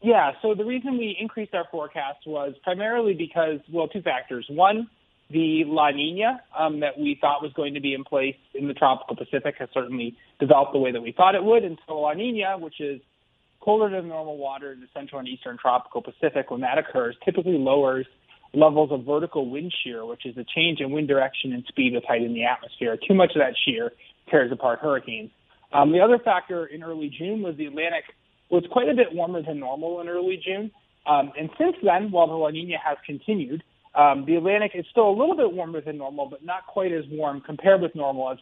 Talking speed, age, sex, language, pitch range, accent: 220 wpm, 30-49, male, English, 135-185 Hz, American